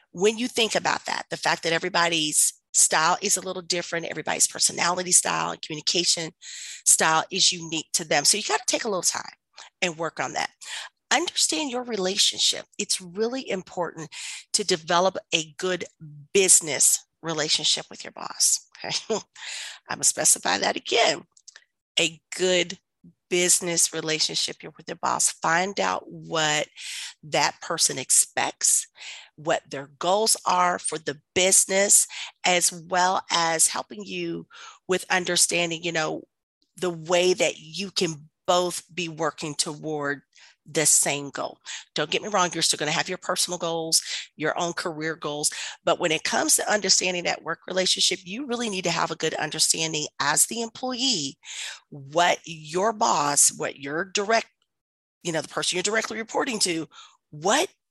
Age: 40-59